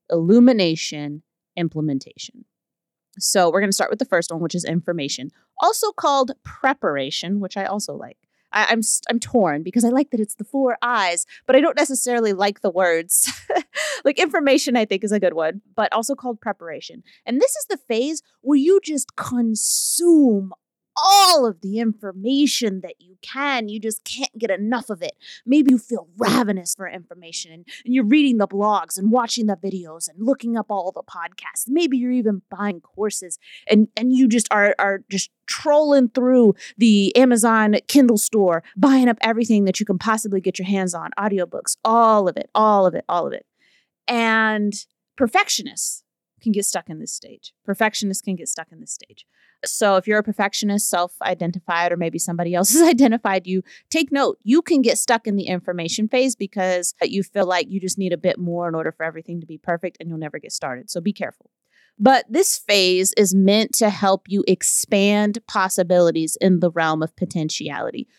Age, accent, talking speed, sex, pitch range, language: 30-49, American, 185 wpm, female, 185-245 Hz, English